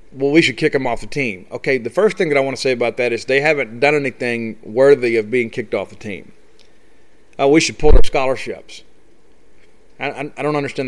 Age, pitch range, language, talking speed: 40-59, 120-155 Hz, English, 230 wpm